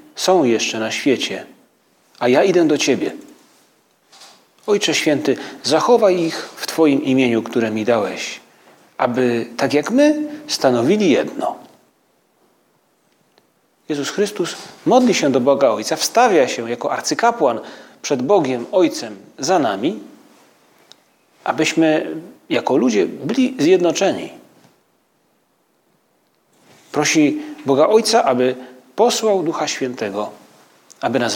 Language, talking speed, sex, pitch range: Polish, 105 wpm, male, 140-220 Hz